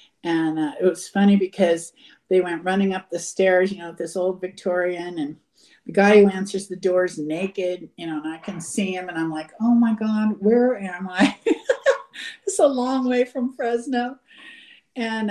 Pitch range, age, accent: 170-215 Hz, 50-69, American